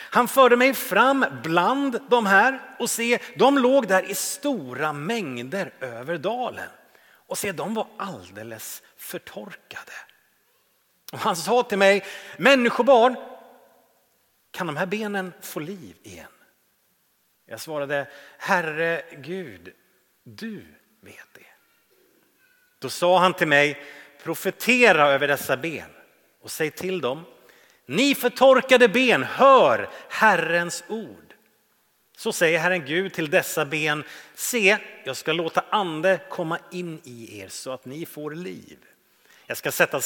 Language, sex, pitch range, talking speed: Swedish, male, 155-235 Hz, 130 wpm